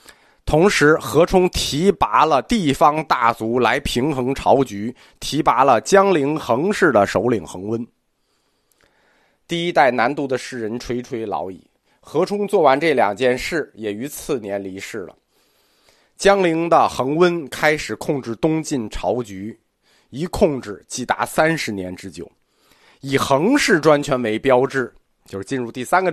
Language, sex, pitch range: Chinese, male, 120-175 Hz